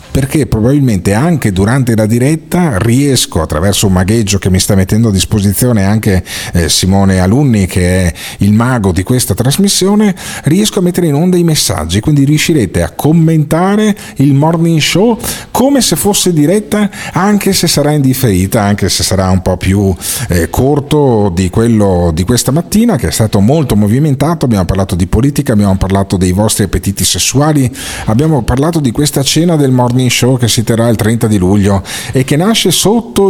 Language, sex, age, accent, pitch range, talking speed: Italian, male, 40-59, native, 100-160 Hz, 175 wpm